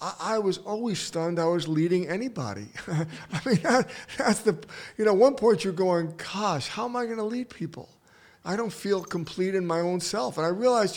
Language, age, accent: English, 50-69, American